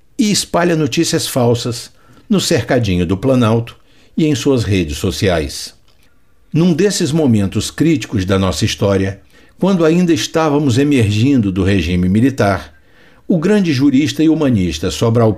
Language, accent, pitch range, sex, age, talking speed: Portuguese, Brazilian, 100-150 Hz, male, 60-79, 130 wpm